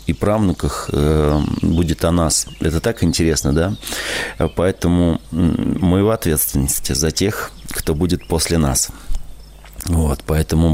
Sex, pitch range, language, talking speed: male, 75-95 Hz, Russian, 115 wpm